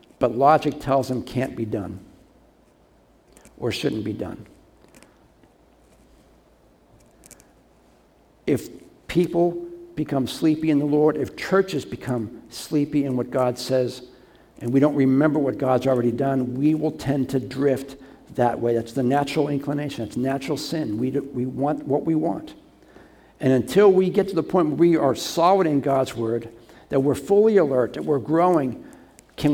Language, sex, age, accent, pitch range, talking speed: English, male, 60-79, American, 125-155 Hz, 155 wpm